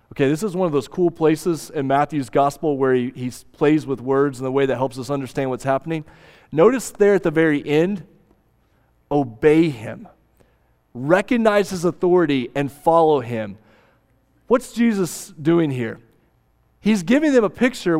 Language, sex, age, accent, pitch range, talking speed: English, male, 30-49, American, 120-180 Hz, 165 wpm